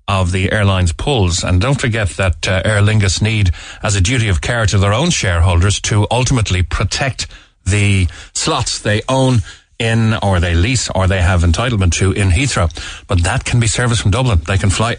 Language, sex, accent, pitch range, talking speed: English, male, Irish, 90-120 Hz, 195 wpm